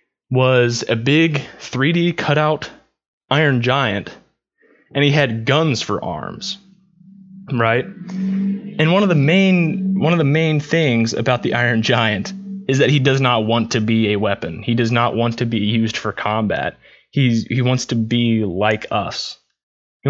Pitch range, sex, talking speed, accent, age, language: 110-140 Hz, male, 165 wpm, American, 20-39, English